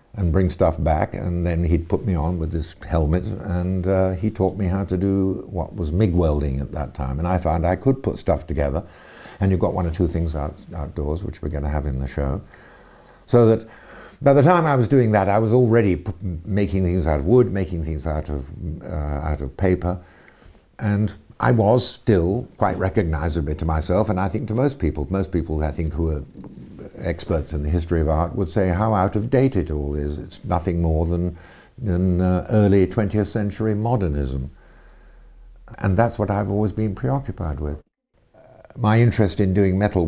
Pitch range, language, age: 80-100 Hz, English, 60-79